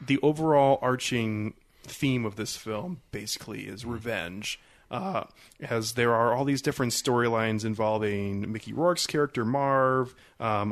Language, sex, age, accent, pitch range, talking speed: English, male, 30-49, American, 105-125 Hz, 135 wpm